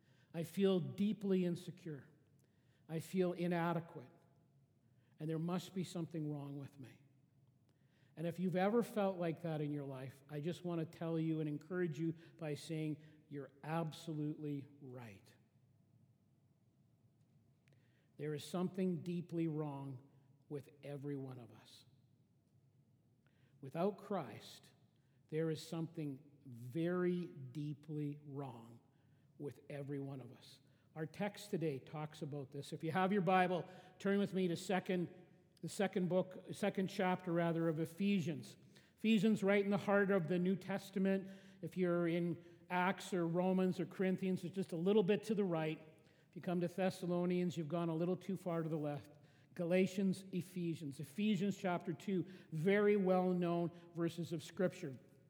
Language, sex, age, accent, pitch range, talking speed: English, male, 50-69, American, 140-180 Hz, 145 wpm